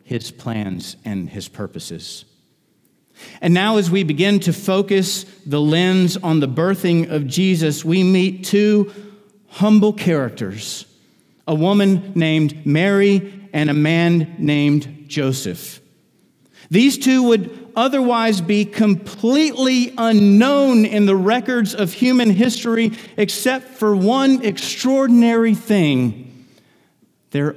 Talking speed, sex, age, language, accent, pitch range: 115 wpm, male, 50-69, English, American, 155-210 Hz